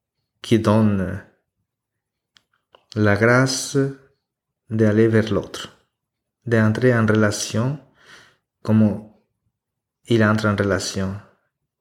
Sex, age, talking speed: male, 30-49, 75 wpm